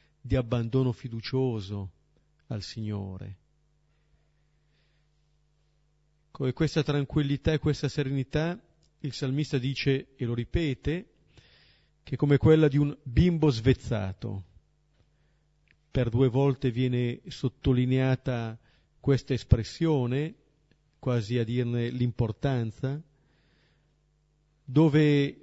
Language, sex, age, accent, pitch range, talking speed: Italian, male, 40-59, native, 125-150 Hz, 85 wpm